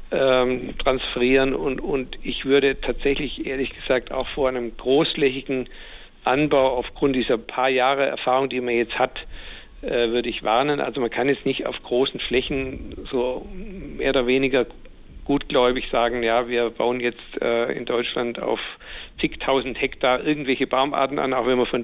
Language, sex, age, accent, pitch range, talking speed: German, male, 50-69, German, 125-145 Hz, 160 wpm